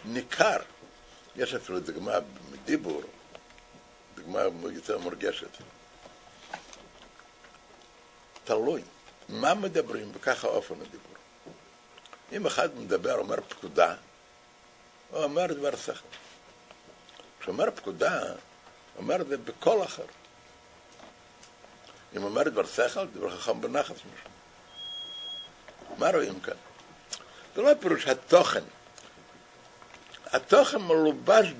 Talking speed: 90 wpm